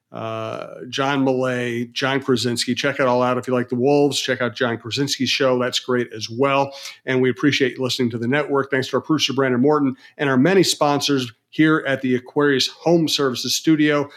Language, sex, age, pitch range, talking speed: English, male, 40-59, 125-145 Hz, 205 wpm